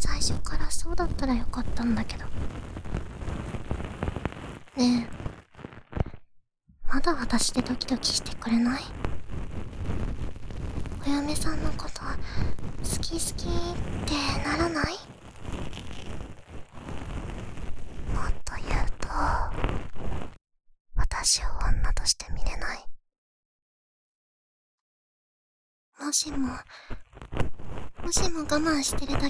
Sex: male